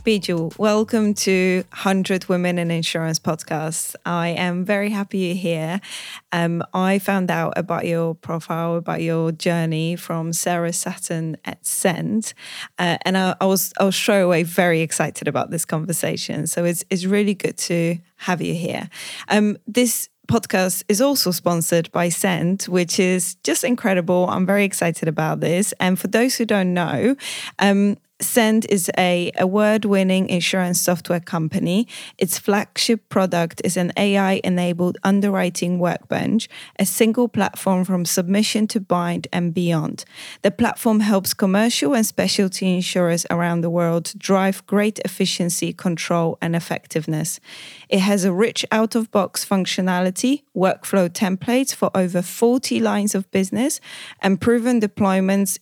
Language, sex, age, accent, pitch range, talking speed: English, female, 20-39, British, 175-205 Hz, 145 wpm